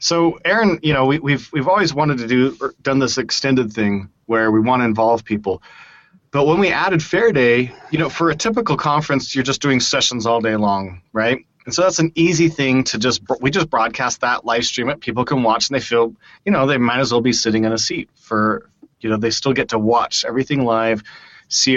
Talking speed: 235 wpm